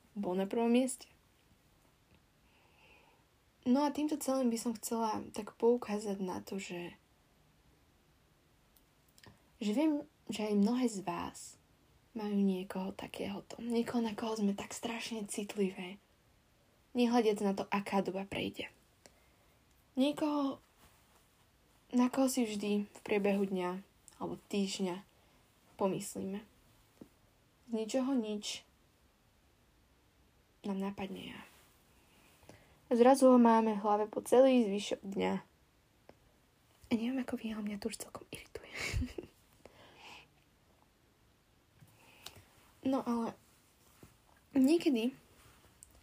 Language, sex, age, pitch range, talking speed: Slovak, female, 10-29, 195-240 Hz, 105 wpm